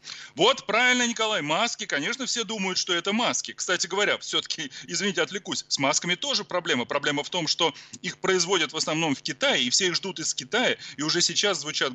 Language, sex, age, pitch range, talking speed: Russian, male, 30-49, 145-195 Hz, 195 wpm